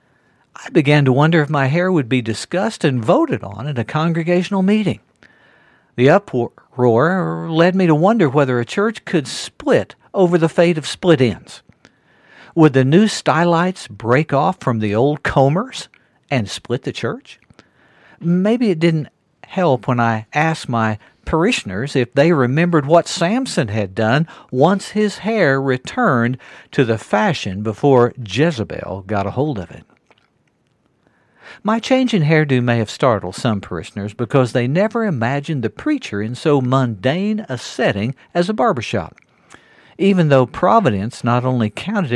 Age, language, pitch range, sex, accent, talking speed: 60-79, English, 115-170 Hz, male, American, 150 wpm